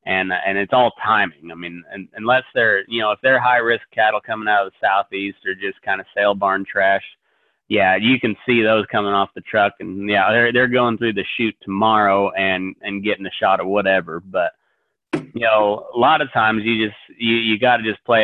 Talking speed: 220 wpm